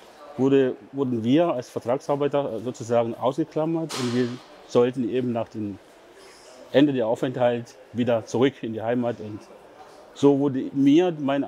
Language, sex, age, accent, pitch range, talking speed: German, male, 40-59, German, 120-145 Hz, 135 wpm